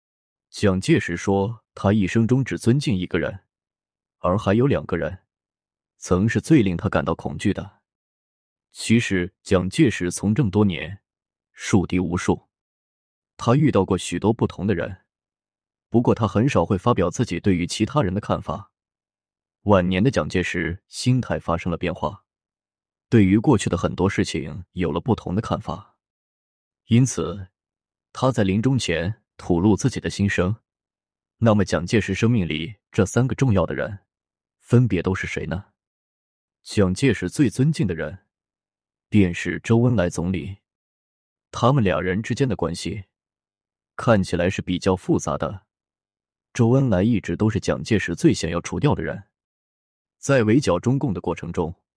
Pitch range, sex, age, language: 85-110 Hz, male, 20-39, Chinese